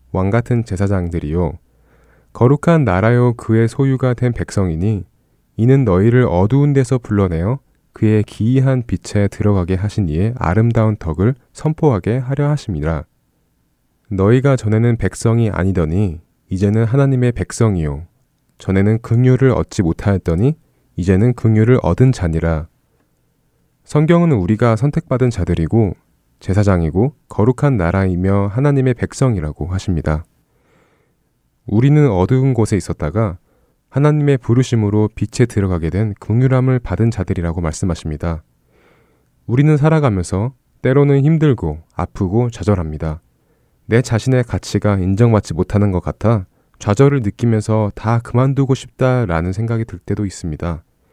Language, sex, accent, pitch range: Korean, male, native, 90-125 Hz